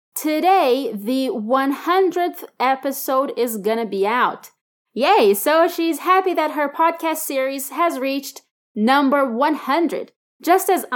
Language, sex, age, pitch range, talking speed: Portuguese, female, 20-39, 245-335 Hz, 120 wpm